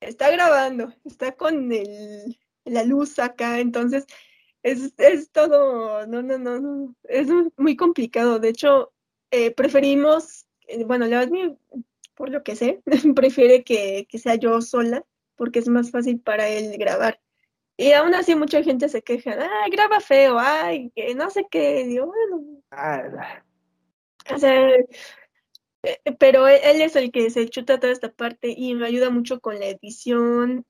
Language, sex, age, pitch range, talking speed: Spanish, female, 10-29, 230-275 Hz, 155 wpm